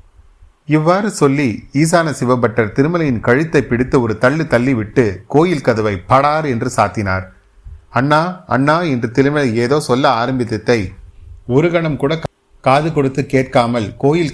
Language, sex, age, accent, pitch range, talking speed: Tamil, male, 30-49, native, 110-145 Hz, 115 wpm